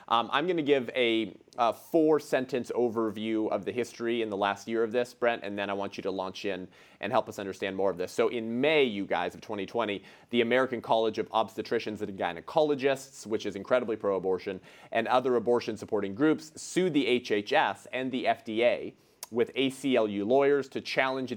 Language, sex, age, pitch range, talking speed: English, male, 30-49, 100-125 Hz, 195 wpm